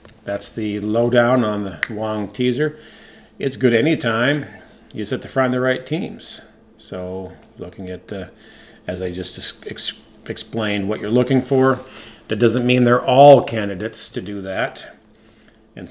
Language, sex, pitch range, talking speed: English, male, 100-120 Hz, 155 wpm